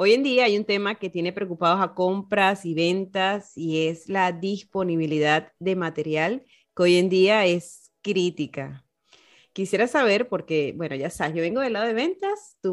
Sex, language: female, Spanish